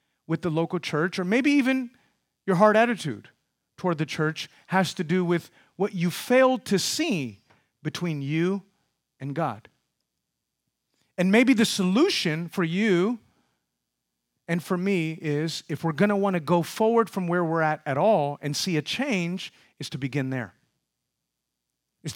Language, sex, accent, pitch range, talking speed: English, male, American, 150-220 Hz, 160 wpm